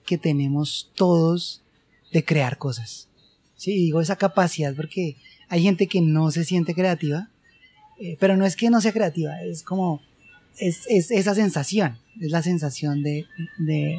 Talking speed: 165 wpm